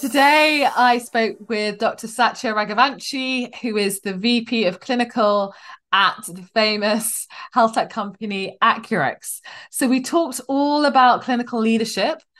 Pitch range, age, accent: 190-245 Hz, 20-39, British